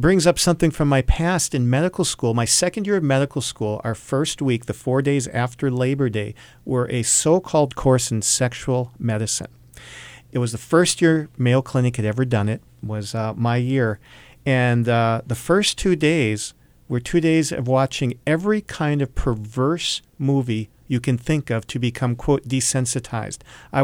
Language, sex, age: English, male, 50-69